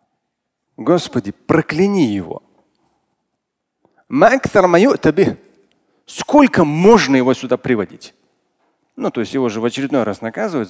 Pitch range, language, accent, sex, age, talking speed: 125-210 Hz, Russian, native, male, 40-59, 95 wpm